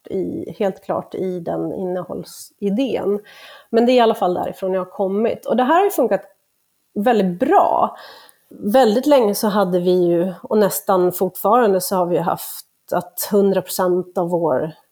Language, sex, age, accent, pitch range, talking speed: Swedish, female, 30-49, native, 185-235 Hz, 165 wpm